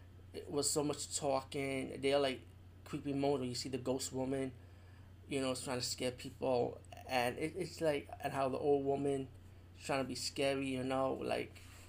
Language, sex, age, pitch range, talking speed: English, male, 30-49, 95-145 Hz, 190 wpm